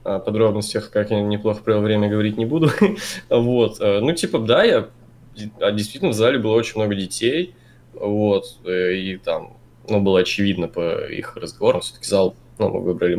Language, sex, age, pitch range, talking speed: Russian, male, 20-39, 95-120 Hz, 160 wpm